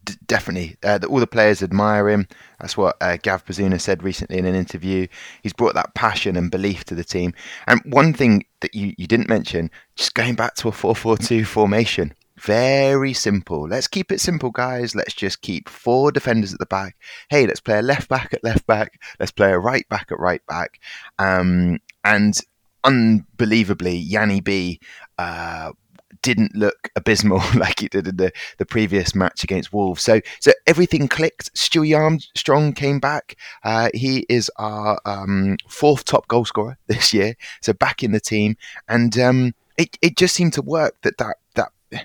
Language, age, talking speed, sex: English, 20-39, 185 wpm, male